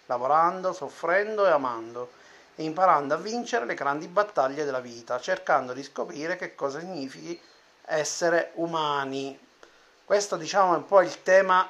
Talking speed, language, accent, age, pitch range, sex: 145 wpm, Italian, native, 30-49, 140-185 Hz, male